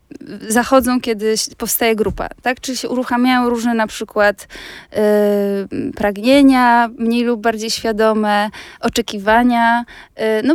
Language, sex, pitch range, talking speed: Polish, female, 210-255 Hz, 100 wpm